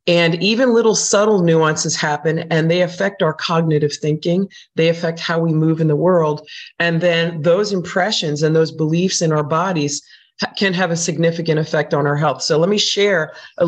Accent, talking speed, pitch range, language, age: American, 190 wpm, 155-185 Hz, English, 40-59